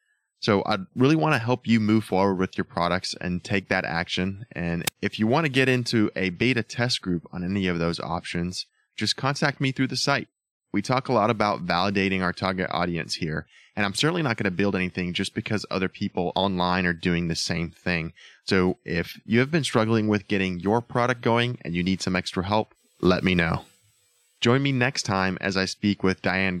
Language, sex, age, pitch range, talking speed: English, male, 20-39, 95-120 Hz, 215 wpm